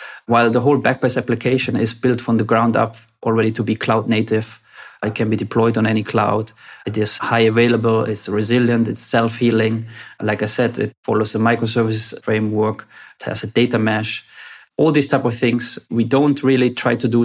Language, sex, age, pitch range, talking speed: English, male, 20-39, 110-125 Hz, 190 wpm